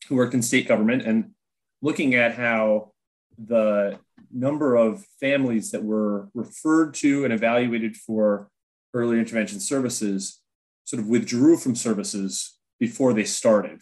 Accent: American